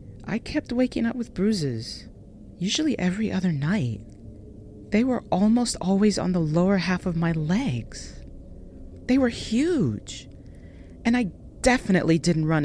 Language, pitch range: English, 110-185 Hz